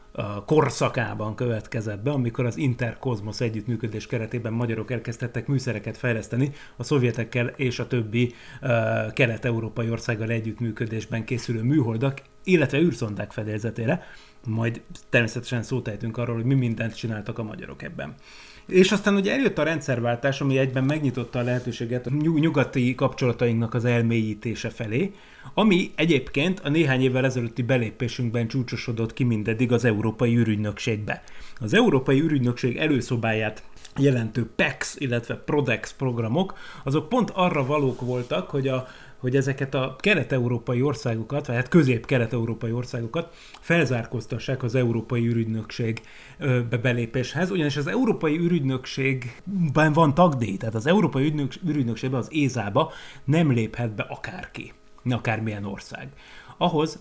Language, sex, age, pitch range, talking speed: Hungarian, male, 30-49, 115-140 Hz, 120 wpm